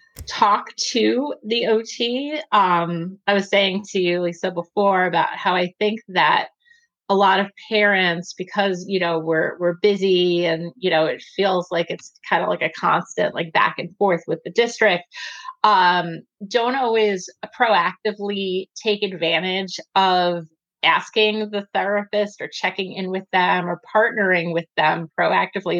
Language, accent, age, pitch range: English, American, 30-49, 175-215 Hz